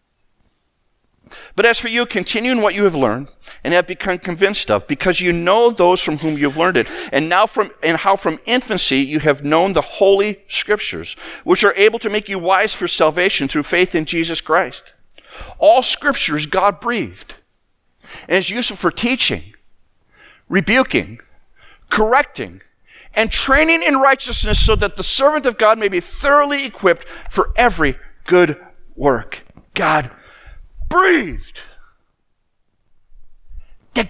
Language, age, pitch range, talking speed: English, 50-69, 165-235 Hz, 145 wpm